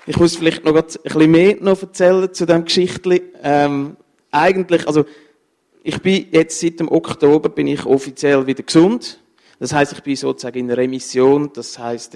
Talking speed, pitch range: 170 wpm, 130-160 Hz